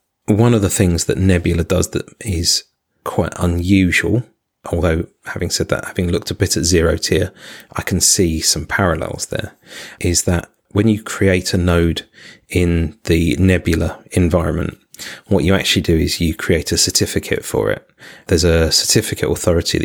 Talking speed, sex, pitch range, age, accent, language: 165 wpm, male, 85-100 Hz, 30-49, British, English